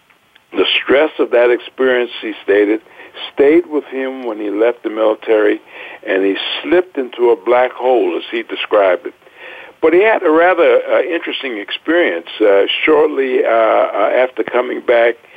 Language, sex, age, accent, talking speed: English, male, 60-79, American, 155 wpm